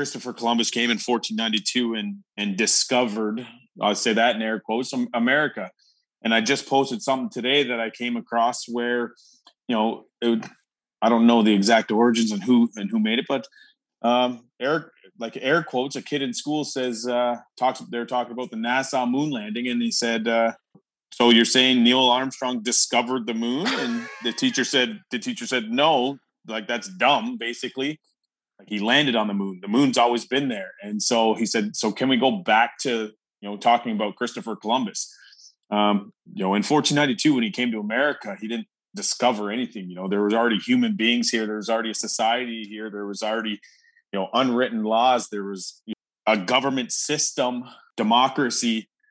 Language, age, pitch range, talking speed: English, 30-49, 110-140 Hz, 185 wpm